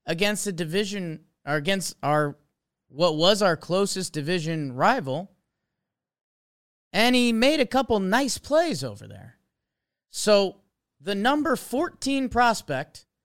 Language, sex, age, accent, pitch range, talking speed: English, male, 30-49, American, 140-205 Hz, 120 wpm